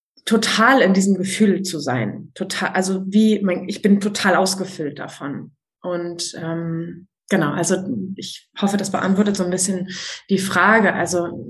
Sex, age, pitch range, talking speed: female, 20-39, 185-210 Hz, 145 wpm